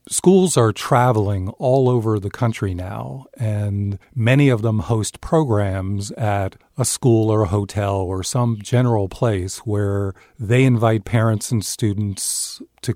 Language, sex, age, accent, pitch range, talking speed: English, male, 50-69, American, 100-120 Hz, 145 wpm